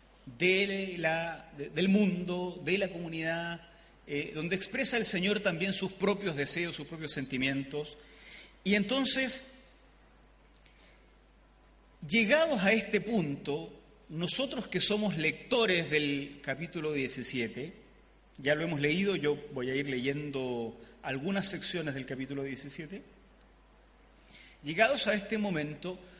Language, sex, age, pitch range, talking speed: Spanish, male, 40-59, 150-210 Hz, 110 wpm